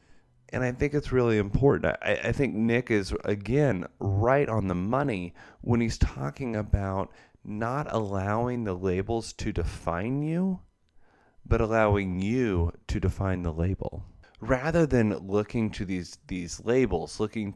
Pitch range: 90-130 Hz